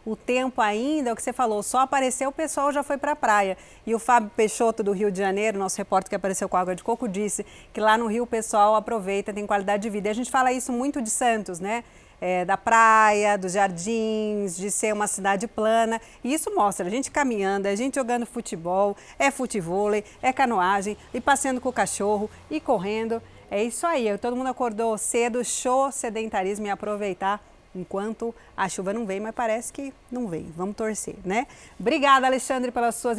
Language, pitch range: Portuguese, 205-255 Hz